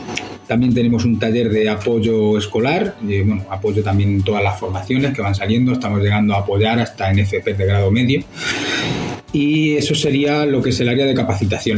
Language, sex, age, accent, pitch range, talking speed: Spanish, male, 30-49, Spanish, 110-130 Hz, 185 wpm